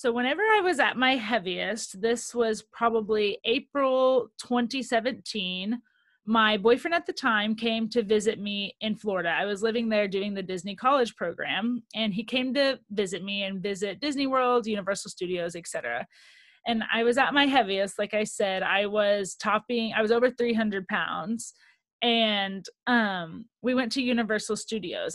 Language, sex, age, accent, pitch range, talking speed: English, female, 30-49, American, 200-245 Hz, 165 wpm